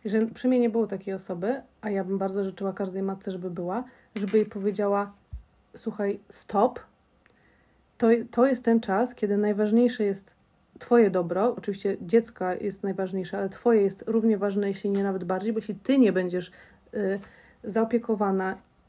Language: Polish